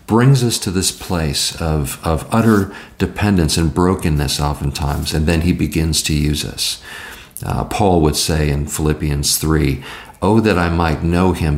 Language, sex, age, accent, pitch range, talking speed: English, male, 50-69, American, 75-85 Hz, 165 wpm